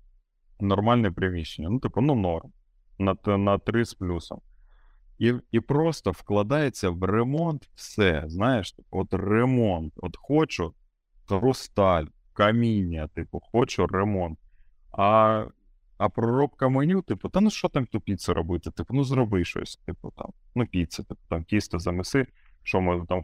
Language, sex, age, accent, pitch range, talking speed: Ukrainian, male, 30-49, native, 85-115 Hz, 140 wpm